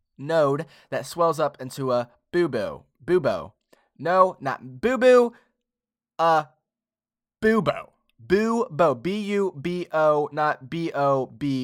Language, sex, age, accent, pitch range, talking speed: English, male, 20-39, American, 140-185 Hz, 145 wpm